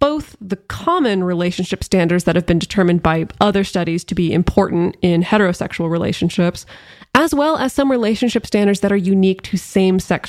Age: 20-39